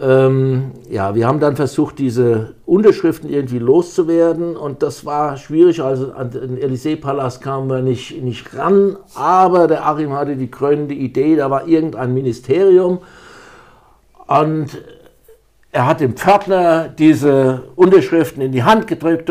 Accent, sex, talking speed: German, male, 135 wpm